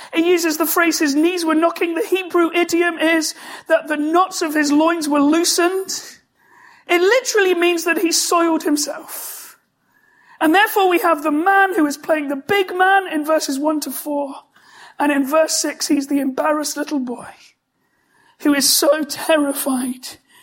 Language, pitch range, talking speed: English, 300-355 Hz, 165 wpm